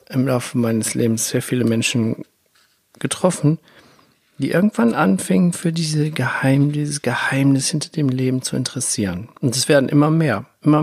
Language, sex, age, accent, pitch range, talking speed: German, male, 50-69, German, 125-155 Hz, 150 wpm